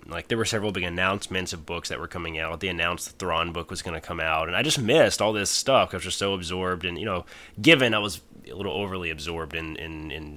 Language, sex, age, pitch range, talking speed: English, male, 20-39, 85-105 Hz, 270 wpm